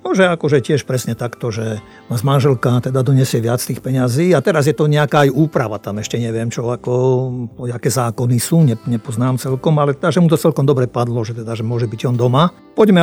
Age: 50-69